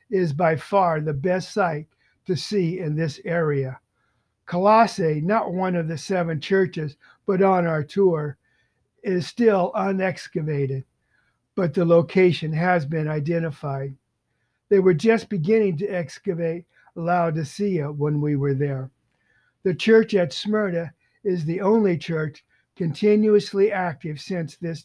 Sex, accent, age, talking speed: male, American, 50-69, 130 wpm